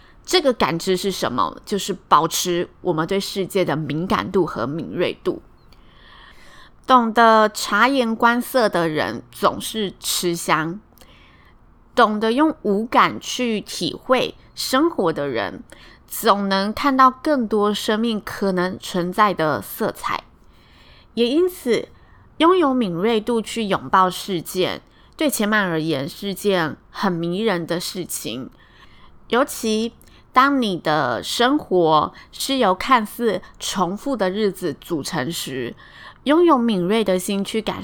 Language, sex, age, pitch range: Chinese, female, 20-39, 180-235 Hz